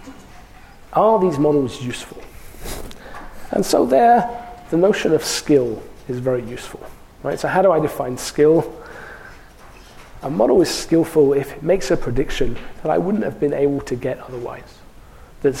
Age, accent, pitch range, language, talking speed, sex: 40-59, British, 130-155 Hz, English, 155 wpm, male